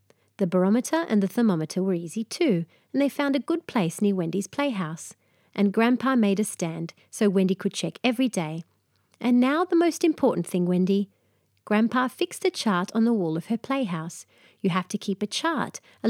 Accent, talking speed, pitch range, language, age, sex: Australian, 195 wpm, 180-245 Hz, English, 40-59, female